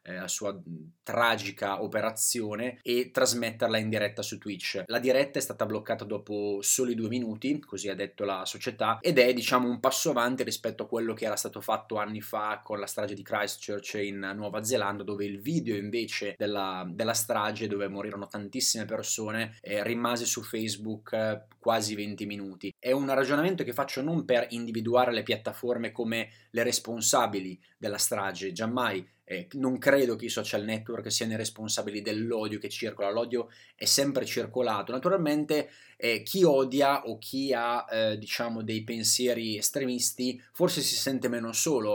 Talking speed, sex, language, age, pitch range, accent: 165 wpm, male, Italian, 20-39, 105-125 Hz, native